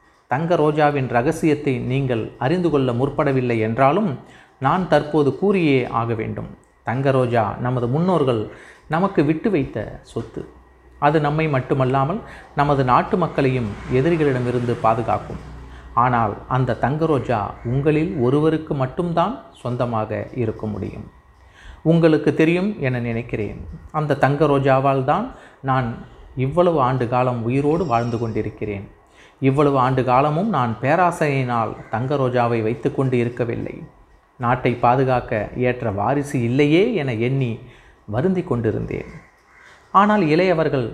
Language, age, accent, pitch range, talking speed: Tamil, 30-49, native, 115-150 Hz, 100 wpm